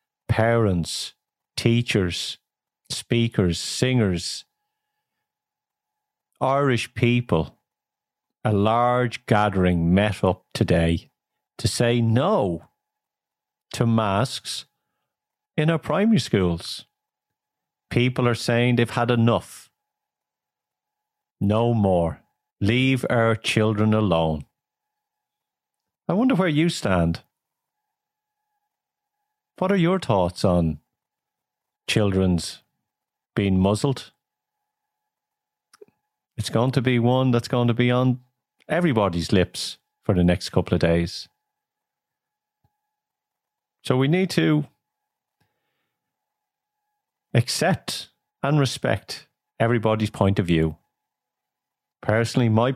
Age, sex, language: 50-69, male, English